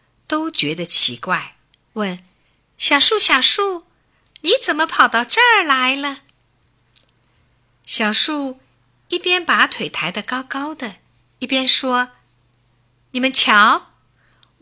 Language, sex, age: Chinese, female, 50-69